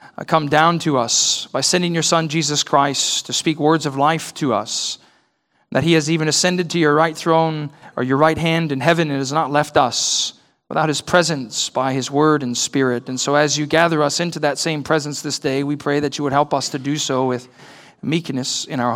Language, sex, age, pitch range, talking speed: English, male, 40-59, 130-160 Hz, 225 wpm